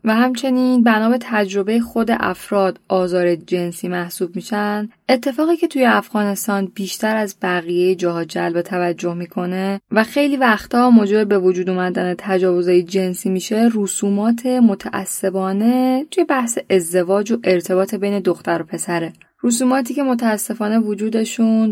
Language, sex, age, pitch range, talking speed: Persian, female, 10-29, 190-235 Hz, 125 wpm